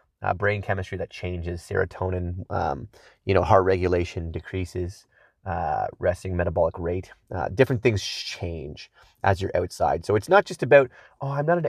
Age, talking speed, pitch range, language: 30-49, 165 wpm, 95-120 Hz, English